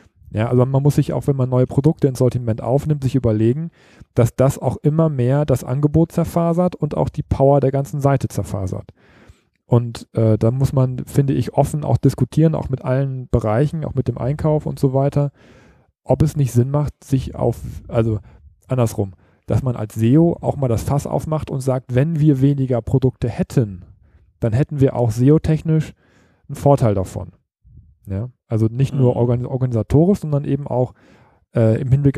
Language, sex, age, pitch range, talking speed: German, male, 40-59, 115-140 Hz, 180 wpm